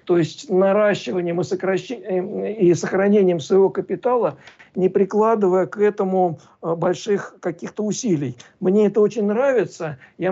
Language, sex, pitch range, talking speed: Russian, male, 175-205 Hz, 115 wpm